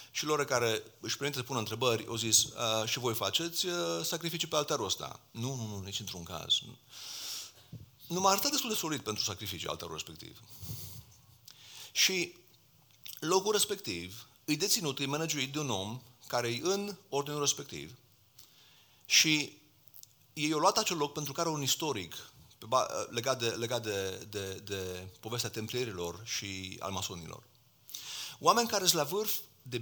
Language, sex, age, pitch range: Romanian, male, 40-59, 115-160 Hz